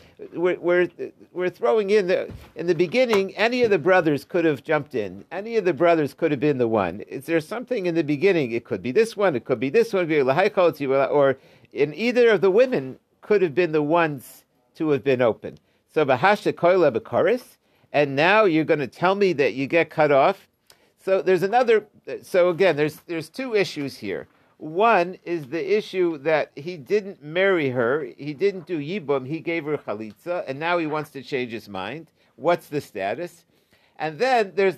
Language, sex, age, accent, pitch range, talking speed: English, male, 50-69, American, 150-200 Hz, 190 wpm